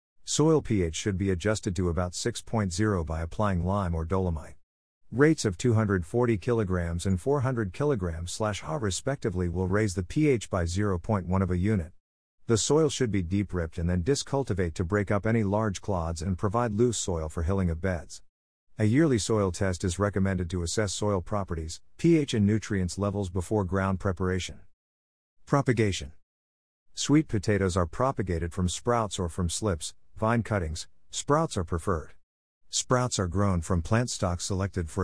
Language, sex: English, male